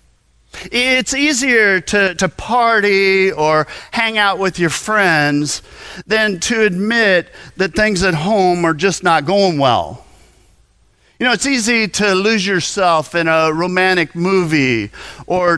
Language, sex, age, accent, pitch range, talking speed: English, male, 50-69, American, 135-185 Hz, 135 wpm